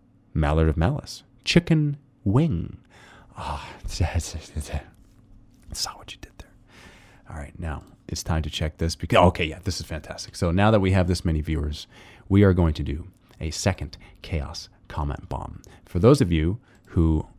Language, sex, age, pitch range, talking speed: English, male, 30-49, 80-100 Hz, 170 wpm